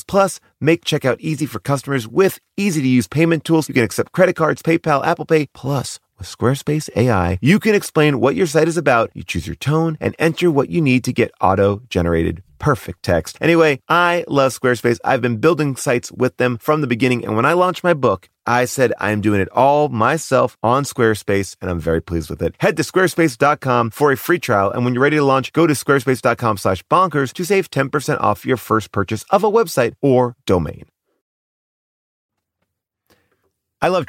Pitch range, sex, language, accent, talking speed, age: 105-160 Hz, male, English, American, 195 wpm, 30-49